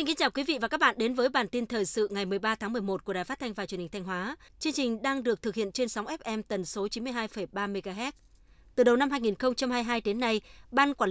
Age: 20-39